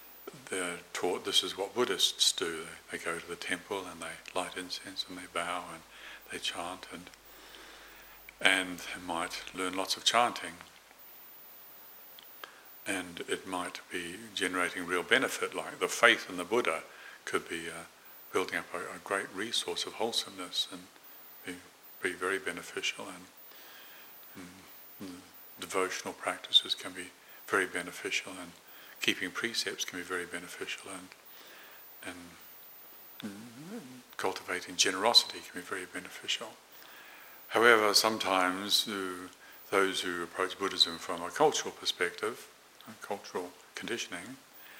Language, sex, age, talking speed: English, male, 50-69, 130 wpm